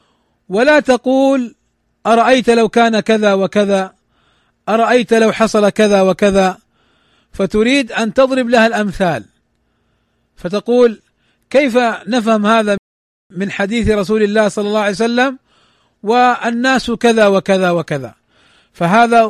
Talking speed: 105 wpm